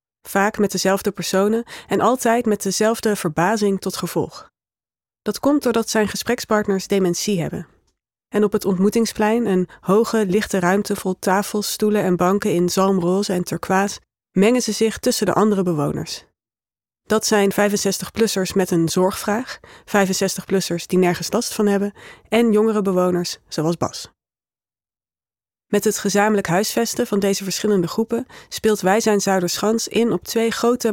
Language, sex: Dutch, female